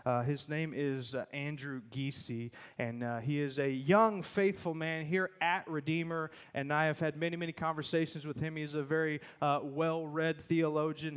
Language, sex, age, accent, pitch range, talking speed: English, male, 30-49, American, 140-170 Hz, 175 wpm